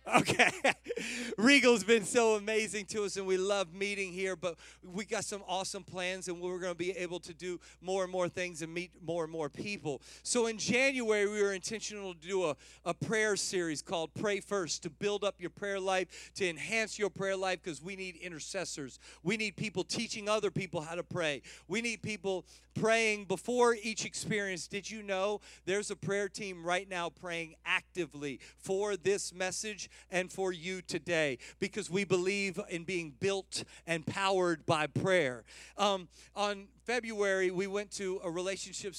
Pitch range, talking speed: 180-205 Hz, 185 wpm